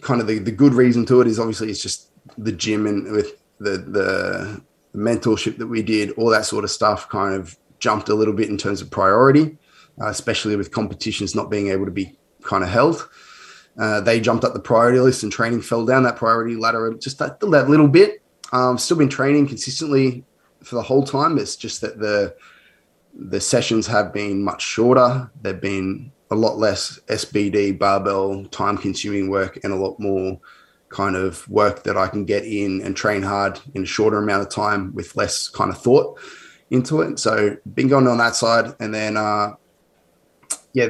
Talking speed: 195 wpm